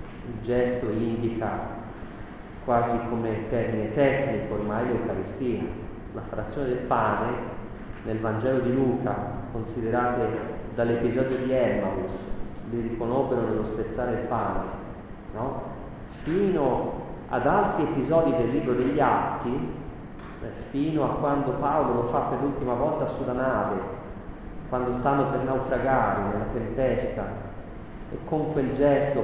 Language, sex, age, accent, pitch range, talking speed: Italian, male, 40-59, native, 110-135 Hz, 115 wpm